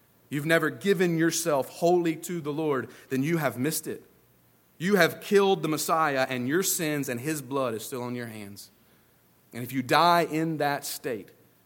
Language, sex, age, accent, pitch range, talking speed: English, male, 40-59, American, 115-165 Hz, 185 wpm